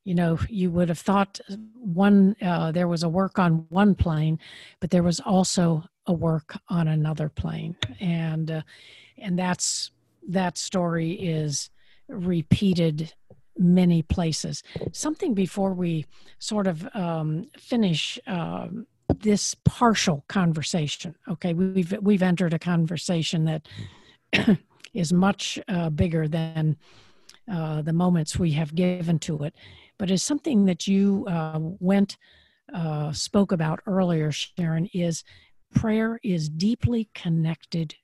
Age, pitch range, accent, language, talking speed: 50-69, 160-195 Hz, American, English, 130 wpm